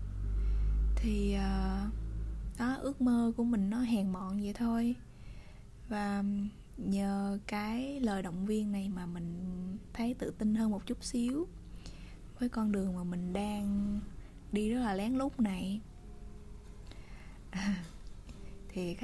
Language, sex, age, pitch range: Vietnamese, female, 20-39, 180-220 Hz